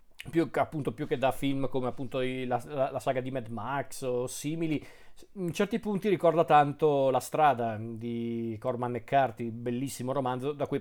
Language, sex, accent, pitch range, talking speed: Italian, male, native, 125-165 Hz, 180 wpm